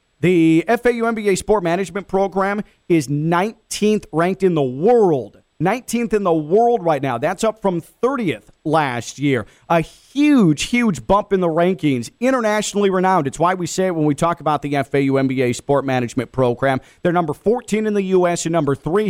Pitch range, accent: 150-200 Hz, American